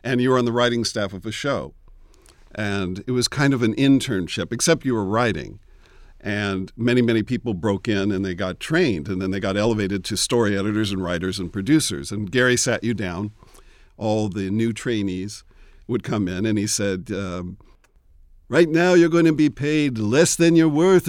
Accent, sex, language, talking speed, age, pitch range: American, male, English, 200 wpm, 50-69, 95-125 Hz